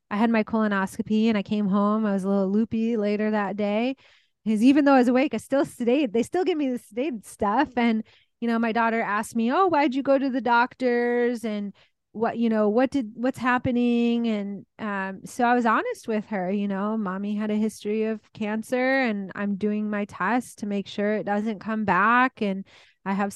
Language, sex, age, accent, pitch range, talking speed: English, female, 20-39, American, 205-245 Hz, 220 wpm